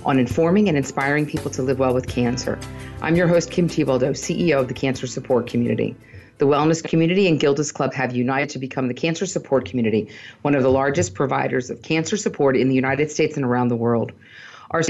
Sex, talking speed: female, 210 wpm